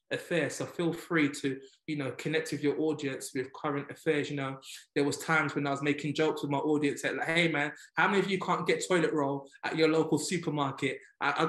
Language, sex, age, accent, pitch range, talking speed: English, male, 20-39, British, 155-200 Hz, 235 wpm